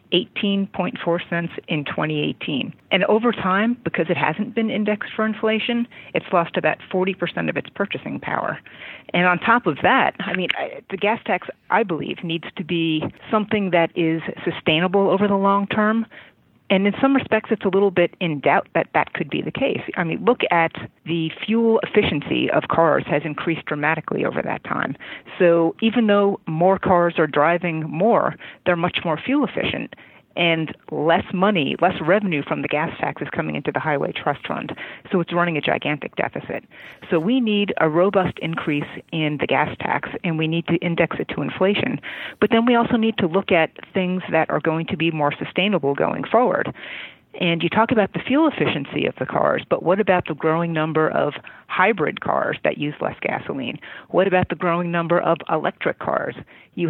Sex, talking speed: female, 190 wpm